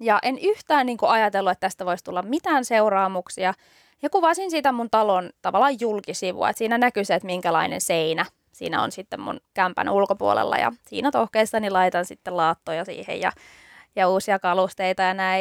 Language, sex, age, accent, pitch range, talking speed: Finnish, female, 20-39, native, 190-265 Hz, 175 wpm